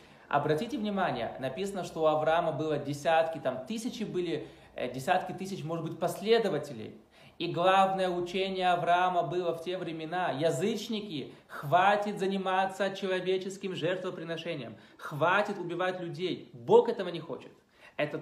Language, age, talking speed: Russian, 20-39, 120 wpm